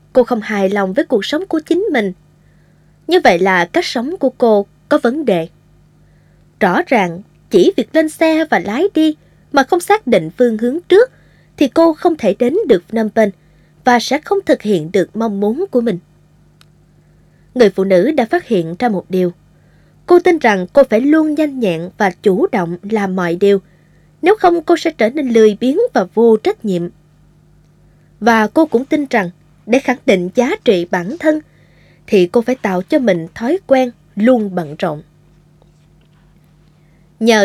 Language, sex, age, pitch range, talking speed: Vietnamese, female, 20-39, 170-265 Hz, 180 wpm